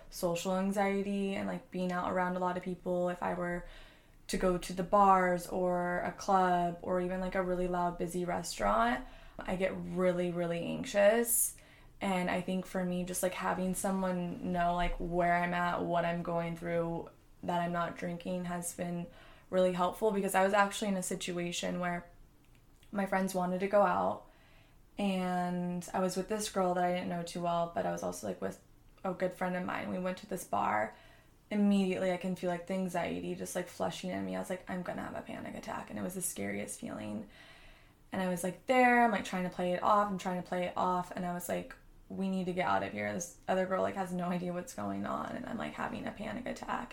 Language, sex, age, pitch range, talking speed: English, female, 20-39, 175-190 Hz, 225 wpm